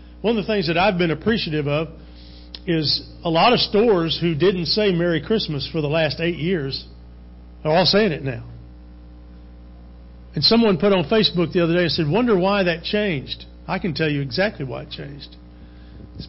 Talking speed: 190 wpm